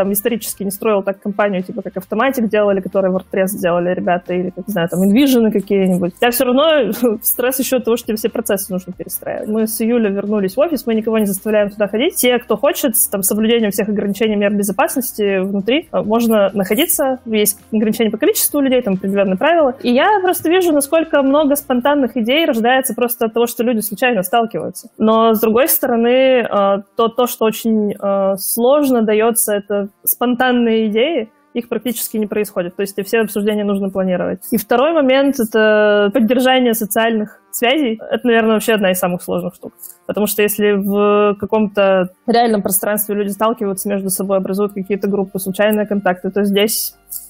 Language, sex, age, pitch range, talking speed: English, female, 20-39, 200-240 Hz, 180 wpm